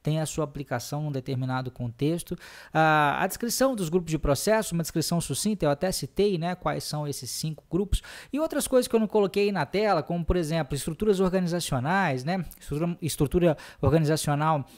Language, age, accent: Portuguese, 20-39, Brazilian